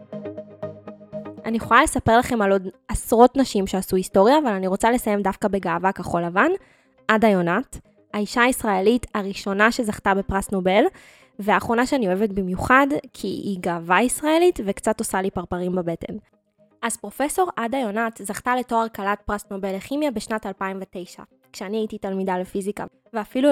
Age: 20-39